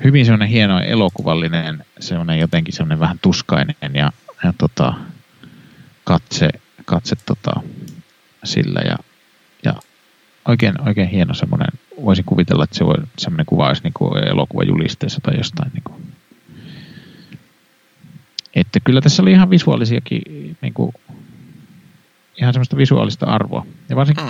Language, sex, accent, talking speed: Finnish, male, native, 125 wpm